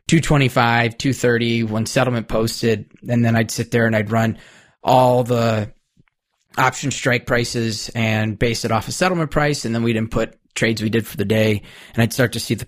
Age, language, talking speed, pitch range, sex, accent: 20-39, English, 200 wpm, 105-120 Hz, male, American